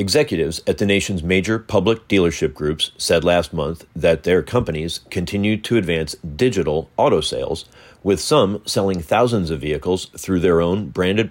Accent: American